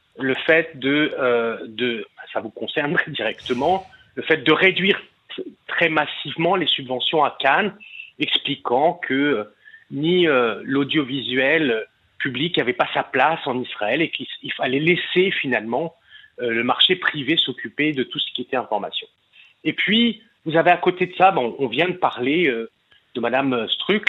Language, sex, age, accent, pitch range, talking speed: French, male, 40-59, French, 140-190 Hz, 165 wpm